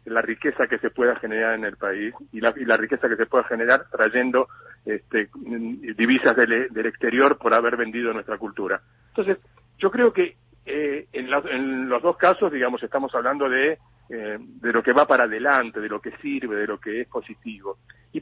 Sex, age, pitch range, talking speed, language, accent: male, 50-69, 115-150 Hz, 200 wpm, Spanish, Argentinian